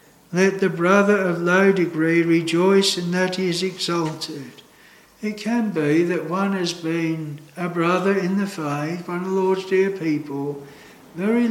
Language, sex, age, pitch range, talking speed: English, male, 60-79, 160-205 Hz, 160 wpm